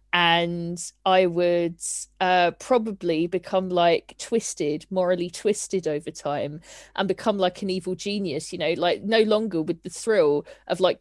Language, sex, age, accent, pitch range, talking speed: English, female, 40-59, British, 170-225 Hz, 155 wpm